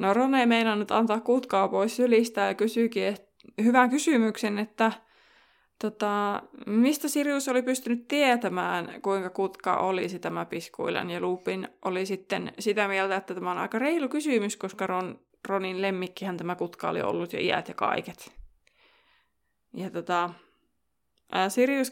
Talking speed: 140 wpm